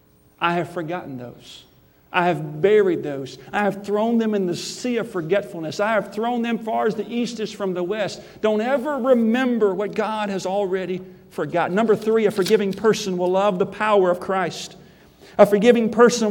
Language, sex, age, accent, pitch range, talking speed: English, male, 50-69, American, 185-230 Hz, 190 wpm